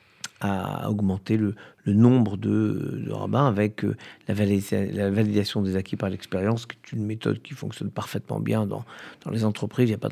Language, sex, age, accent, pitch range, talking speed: French, male, 50-69, French, 105-125 Hz, 195 wpm